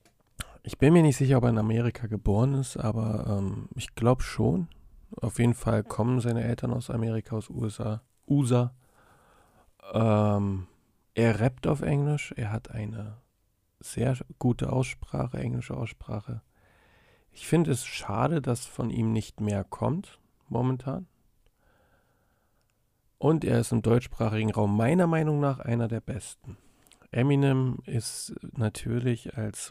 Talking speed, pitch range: 135 wpm, 110-125 Hz